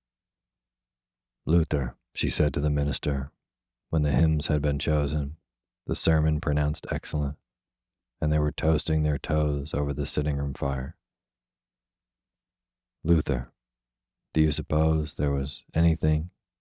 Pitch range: 70-80 Hz